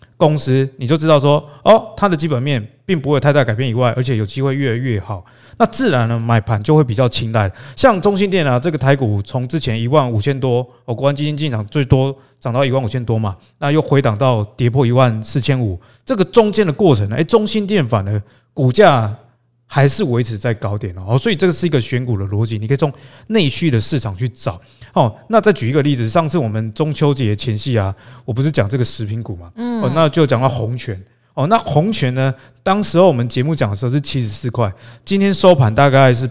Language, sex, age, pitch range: Chinese, male, 20-39, 115-155 Hz